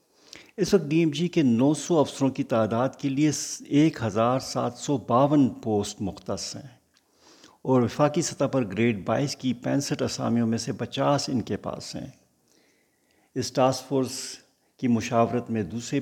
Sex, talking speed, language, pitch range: male, 165 wpm, Urdu, 105-135 Hz